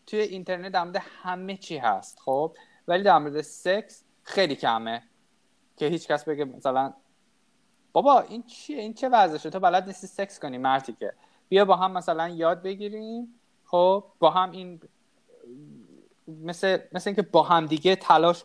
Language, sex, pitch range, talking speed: Persian, male, 145-185 Hz, 160 wpm